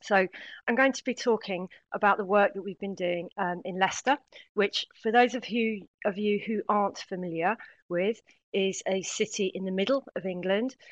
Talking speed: 185 wpm